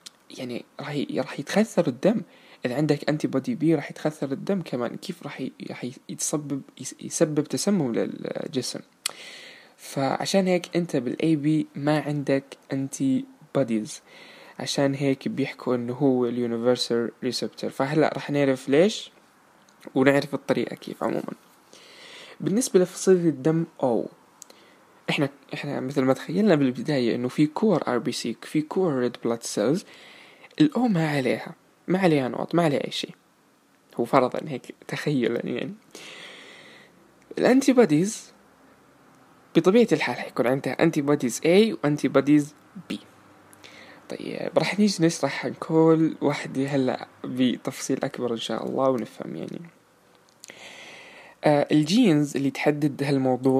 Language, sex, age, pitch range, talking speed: Arabic, male, 20-39, 135-180 Hz, 125 wpm